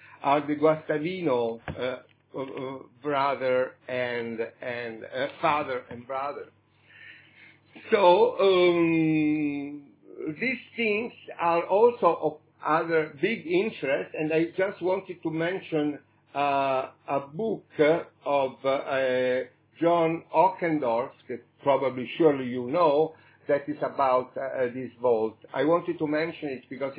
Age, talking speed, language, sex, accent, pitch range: 50-69, 120 wpm, English, male, Italian, 130-170 Hz